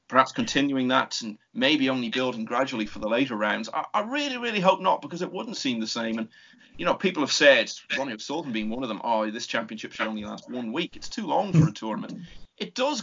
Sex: male